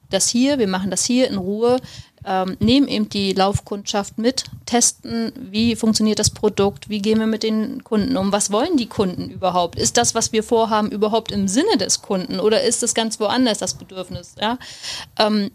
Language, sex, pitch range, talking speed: German, female, 190-230 Hz, 195 wpm